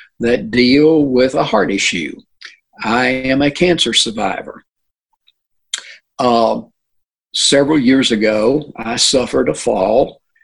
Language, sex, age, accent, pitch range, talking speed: English, male, 60-79, American, 115-185 Hz, 110 wpm